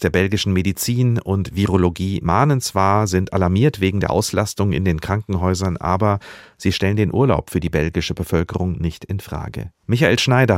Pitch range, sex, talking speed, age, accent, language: 90-110 Hz, male, 165 wpm, 50-69, German, German